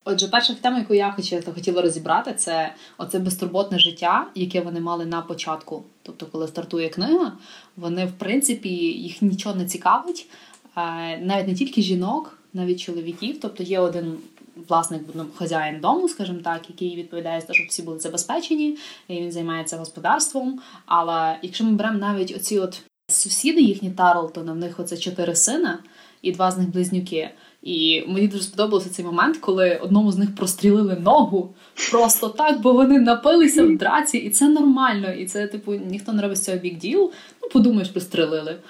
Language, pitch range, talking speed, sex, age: Ukrainian, 170-225 Hz, 170 wpm, female, 20-39